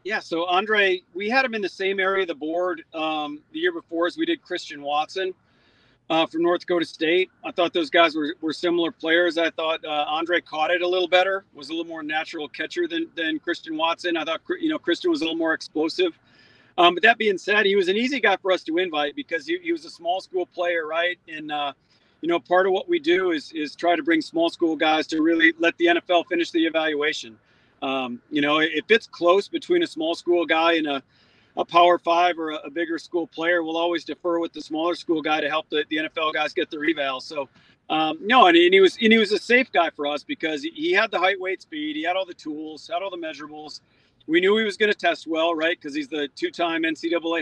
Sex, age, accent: male, 40-59, American